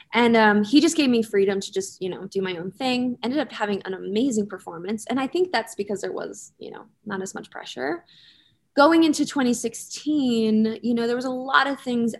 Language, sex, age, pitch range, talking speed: English, female, 20-39, 195-240 Hz, 220 wpm